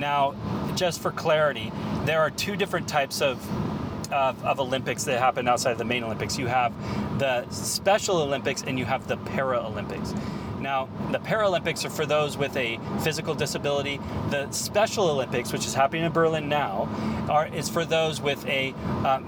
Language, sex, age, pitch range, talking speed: English, male, 30-49, 140-170 Hz, 175 wpm